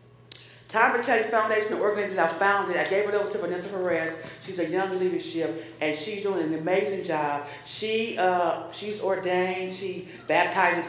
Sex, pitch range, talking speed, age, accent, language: female, 165-195 Hz, 165 wpm, 40-59, American, English